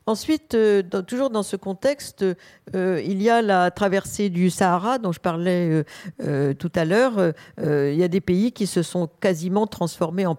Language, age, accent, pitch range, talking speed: French, 50-69, French, 165-195 Hz, 170 wpm